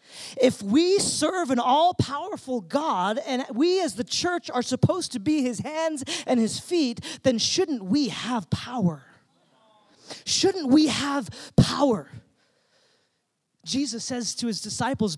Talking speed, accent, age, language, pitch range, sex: 140 wpm, American, 30-49, English, 195-285 Hz, male